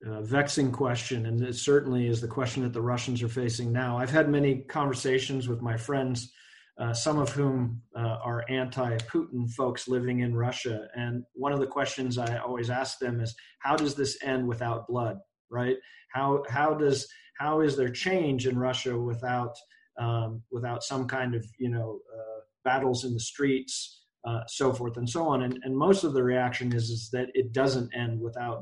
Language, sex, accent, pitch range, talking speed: English, male, American, 120-140 Hz, 195 wpm